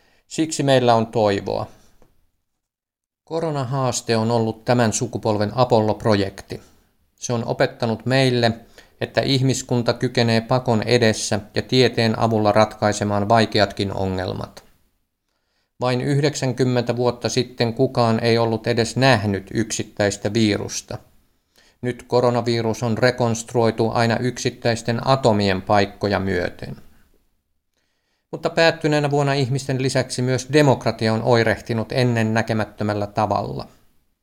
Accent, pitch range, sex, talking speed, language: native, 110-125 Hz, male, 100 wpm, Finnish